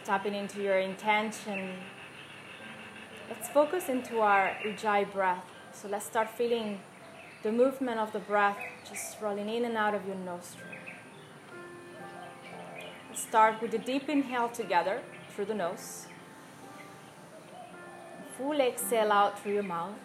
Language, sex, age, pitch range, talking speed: English, female, 20-39, 185-225 Hz, 130 wpm